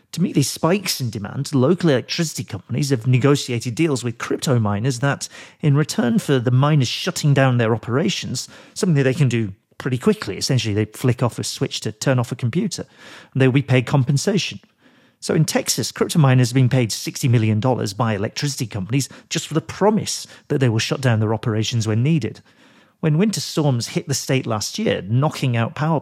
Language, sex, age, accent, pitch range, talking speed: English, male, 40-59, British, 115-150 Hz, 195 wpm